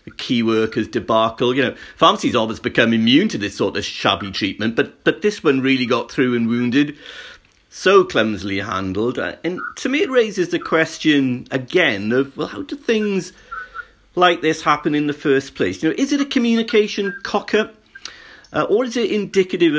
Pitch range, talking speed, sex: 115-160 Hz, 180 wpm, male